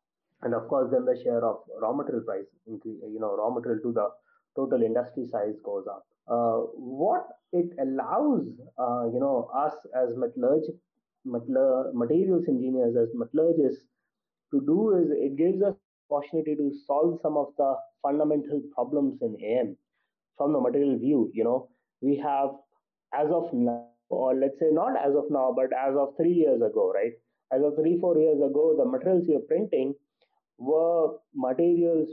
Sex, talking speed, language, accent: male, 165 wpm, English, Indian